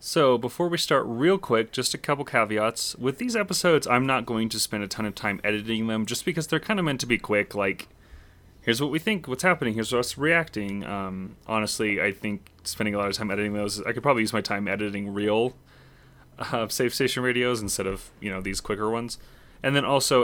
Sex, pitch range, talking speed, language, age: male, 105-145 Hz, 225 wpm, English, 30-49